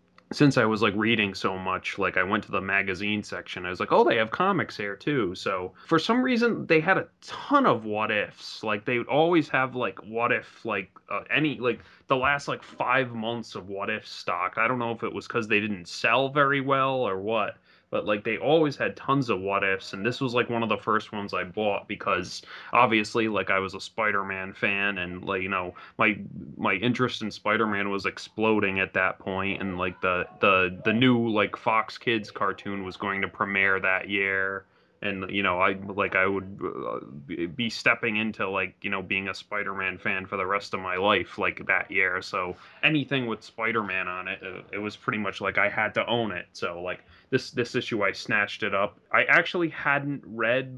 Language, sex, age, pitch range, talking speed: English, male, 20-39, 95-125 Hz, 215 wpm